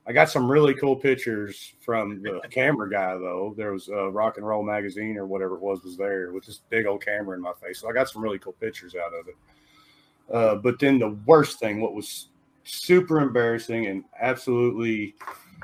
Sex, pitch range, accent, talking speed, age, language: male, 100-125 Hz, American, 205 wpm, 40-59, English